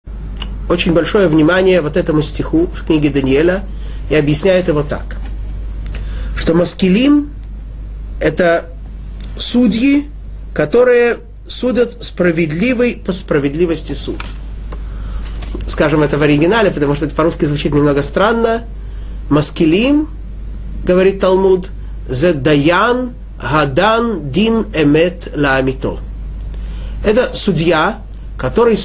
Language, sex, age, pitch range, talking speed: Russian, male, 30-49, 135-190 Hz, 95 wpm